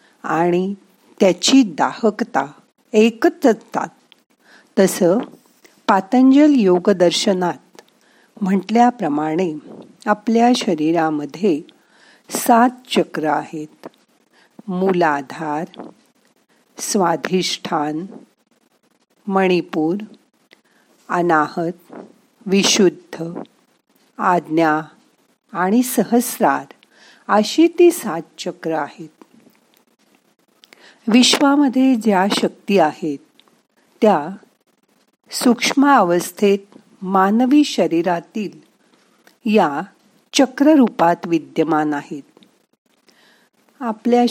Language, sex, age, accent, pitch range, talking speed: Marathi, female, 50-69, native, 165-240 Hz, 50 wpm